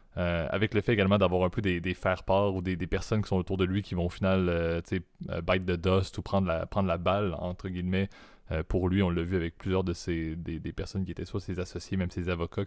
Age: 20-39